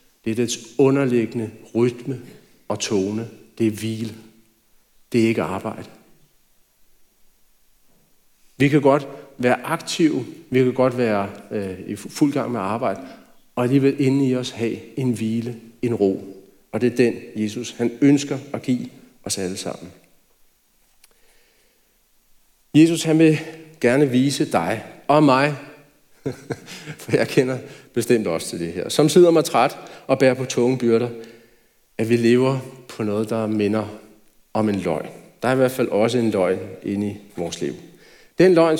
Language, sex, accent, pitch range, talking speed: Danish, male, native, 110-140 Hz, 155 wpm